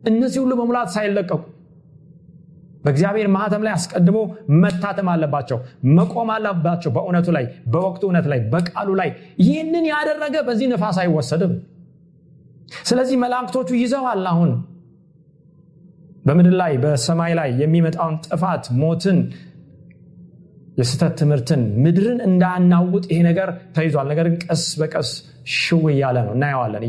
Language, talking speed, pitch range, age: Amharic, 105 wpm, 140-185 Hz, 30-49